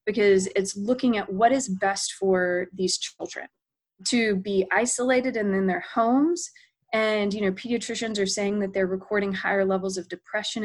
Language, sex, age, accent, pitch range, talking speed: English, female, 20-39, American, 190-220 Hz, 170 wpm